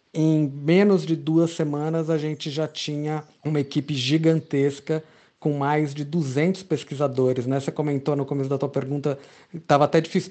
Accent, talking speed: Brazilian, 165 wpm